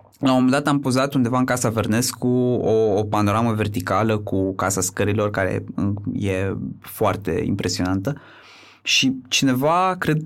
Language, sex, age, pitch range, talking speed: Romanian, male, 20-39, 100-135 Hz, 140 wpm